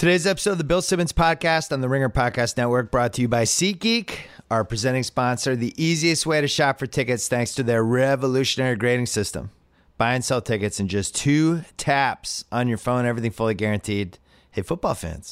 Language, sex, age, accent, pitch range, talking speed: English, male, 30-49, American, 90-125 Hz, 195 wpm